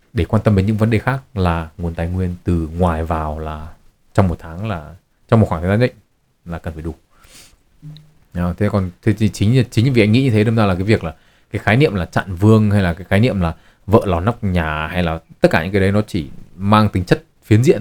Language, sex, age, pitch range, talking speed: Vietnamese, male, 20-39, 90-115 Hz, 255 wpm